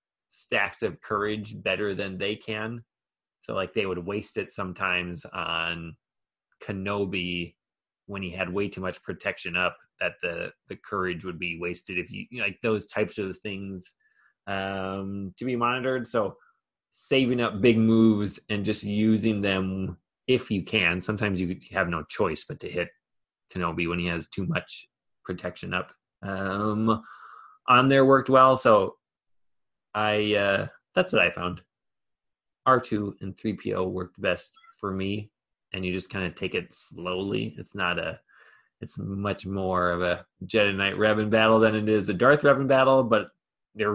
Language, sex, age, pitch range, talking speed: English, male, 20-39, 95-115 Hz, 160 wpm